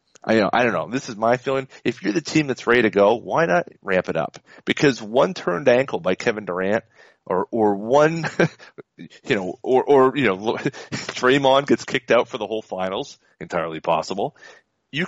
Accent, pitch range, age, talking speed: American, 100-145 Hz, 30-49, 195 wpm